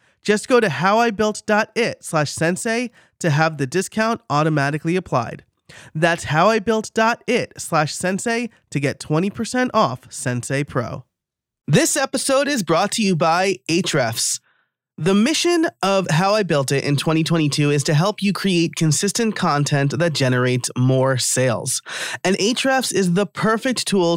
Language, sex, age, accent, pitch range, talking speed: English, male, 30-49, American, 145-210 Hz, 140 wpm